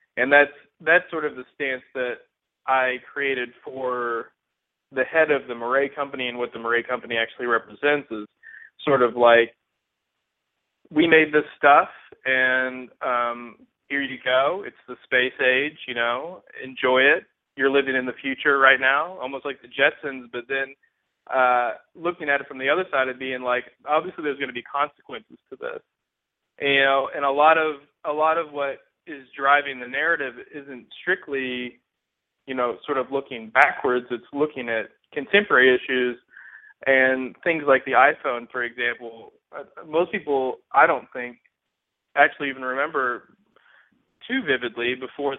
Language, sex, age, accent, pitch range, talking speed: English, male, 20-39, American, 125-145 Hz, 165 wpm